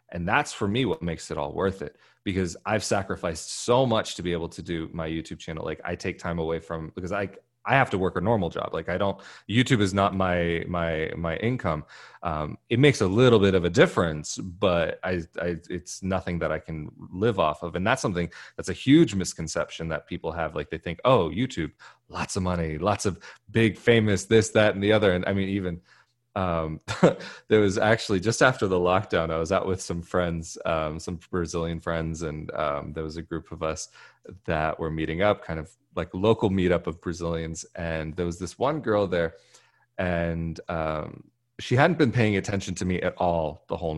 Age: 30-49